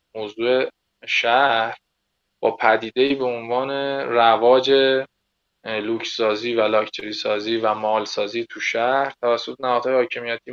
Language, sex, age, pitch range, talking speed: Persian, male, 20-39, 110-130 Hz, 115 wpm